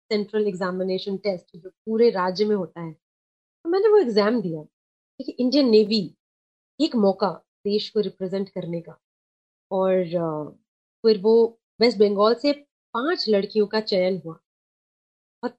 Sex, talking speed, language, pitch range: female, 135 wpm, English, 200-255 Hz